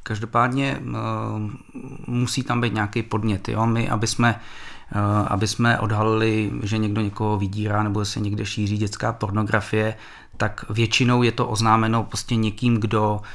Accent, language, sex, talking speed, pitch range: native, Czech, male, 145 wpm, 105-115 Hz